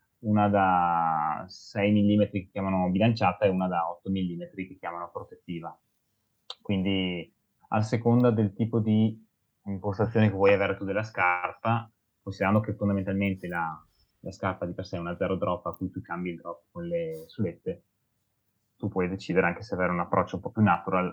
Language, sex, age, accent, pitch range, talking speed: Italian, male, 20-39, native, 90-105 Hz, 175 wpm